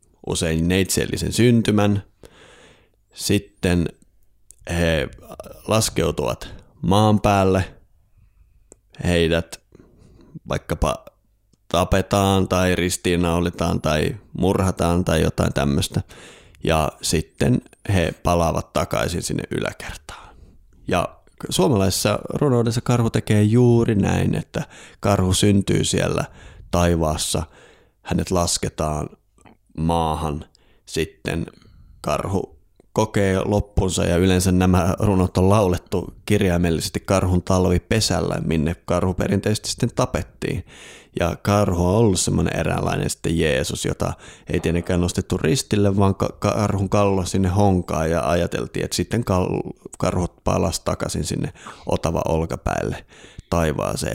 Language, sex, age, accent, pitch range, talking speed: Finnish, male, 30-49, native, 85-100 Hz, 95 wpm